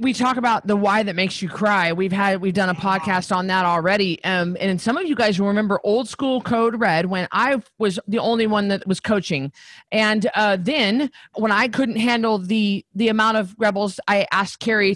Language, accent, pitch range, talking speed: English, American, 200-275 Hz, 215 wpm